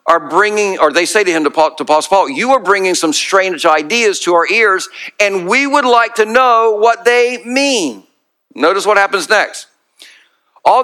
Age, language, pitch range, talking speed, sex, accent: 50-69, English, 175-235 Hz, 195 wpm, male, American